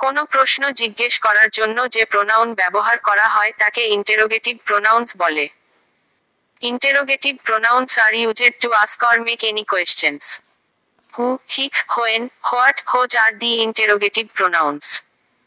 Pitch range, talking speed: 210-250 Hz, 85 wpm